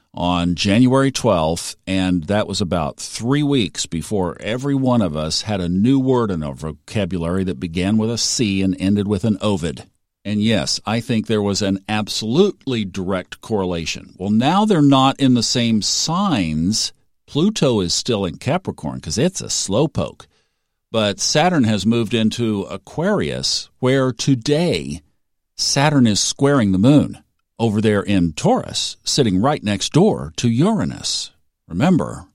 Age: 50-69